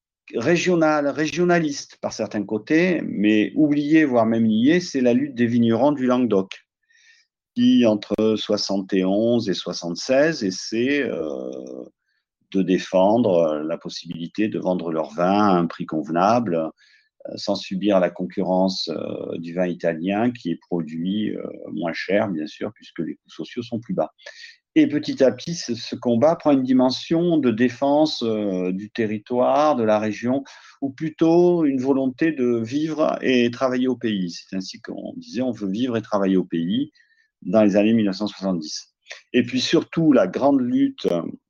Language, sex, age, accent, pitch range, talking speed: French, male, 50-69, French, 100-155 Hz, 155 wpm